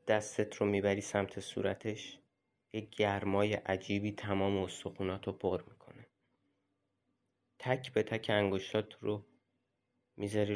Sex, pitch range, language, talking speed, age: male, 100-125 Hz, Persian, 110 wpm, 30-49